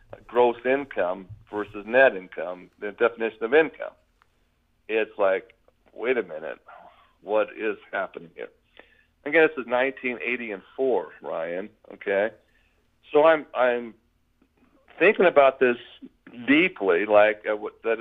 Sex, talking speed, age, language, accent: male, 115 wpm, 50-69, English, American